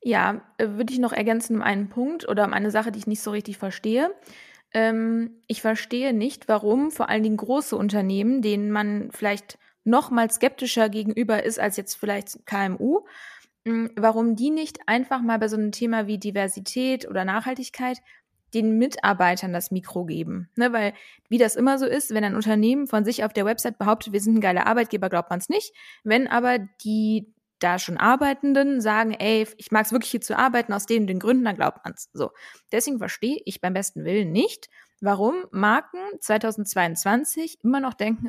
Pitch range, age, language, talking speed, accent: 205-245 Hz, 20-39, German, 185 wpm, German